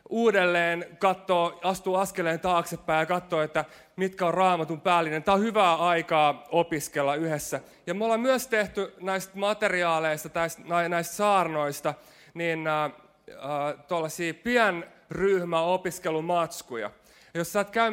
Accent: native